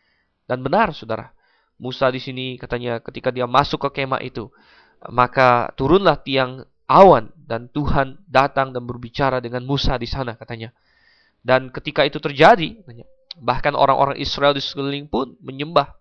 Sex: male